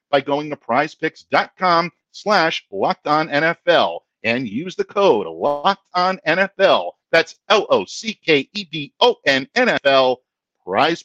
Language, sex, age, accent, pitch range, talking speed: English, male, 50-69, American, 105-150 Hz, 140 wpm